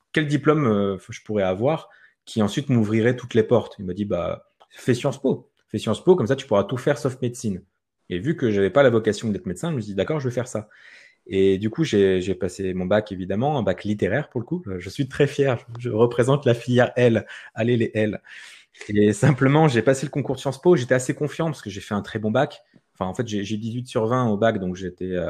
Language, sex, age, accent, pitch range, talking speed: French, male, 30-49, French, 110-140 Hz, 250 wpm